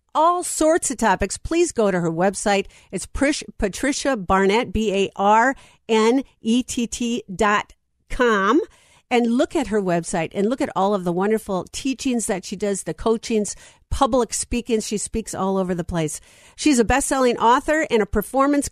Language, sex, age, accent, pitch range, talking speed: English, female, 50-69, American, 185-245 Hz, 175 wpm